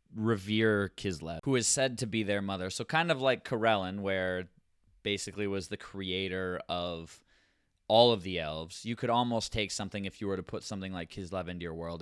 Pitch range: 90-110 Hz